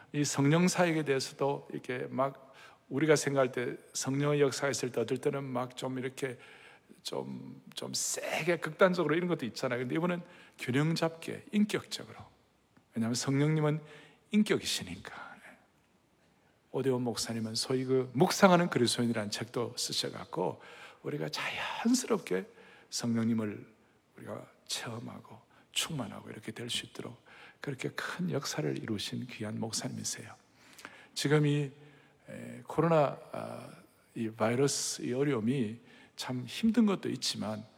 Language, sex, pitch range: Korean, male, 115-165 Hz